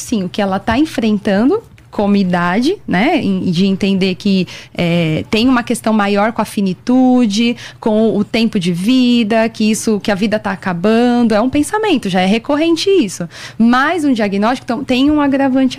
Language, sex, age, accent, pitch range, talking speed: Portuguese, female, 20-39, Brazilian, 205-265 Hz, 175 wpm